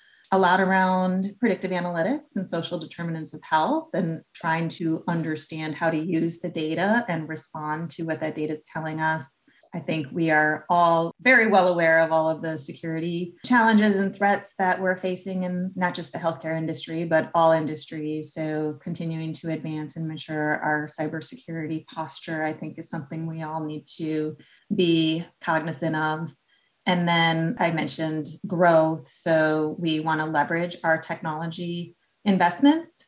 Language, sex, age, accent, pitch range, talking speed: English, female, 30-49, American, 155-175 Hz, 160 wpm